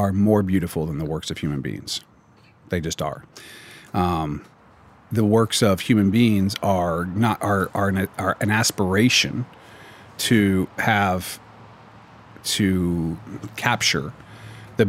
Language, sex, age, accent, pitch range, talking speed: English, male, 40-59, American, 90-110 Hz, 125 wpm